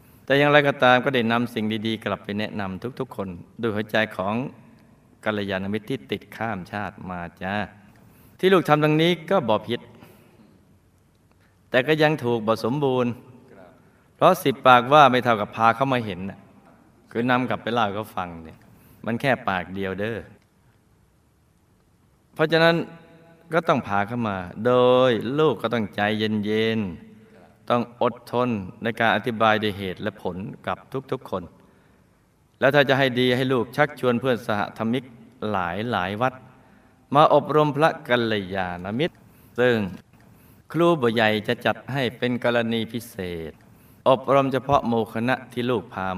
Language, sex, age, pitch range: Thai, male, 20-39, 105-130 Hz